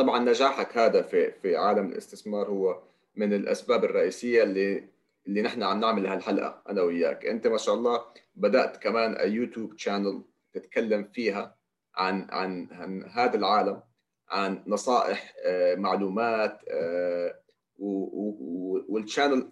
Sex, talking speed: male, 115 wpm